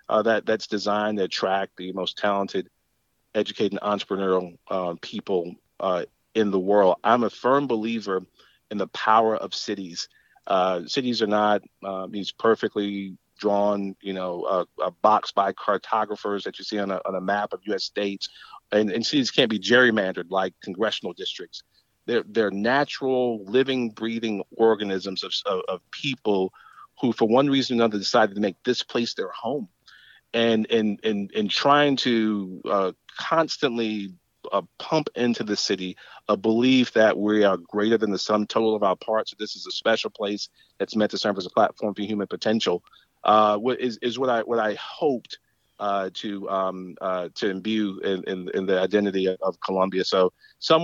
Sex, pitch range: male, 100-120 Hz